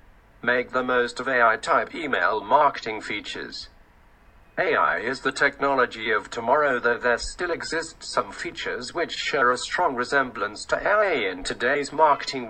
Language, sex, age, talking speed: English, male, 50-69, 150 wpm